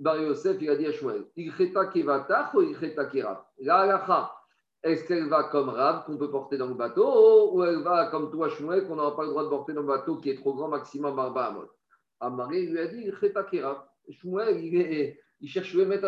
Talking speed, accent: 225 wpm, French